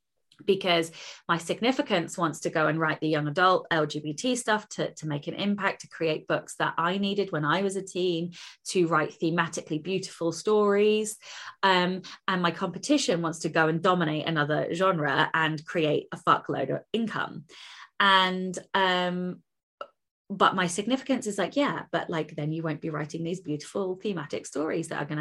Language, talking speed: English, 175 wpm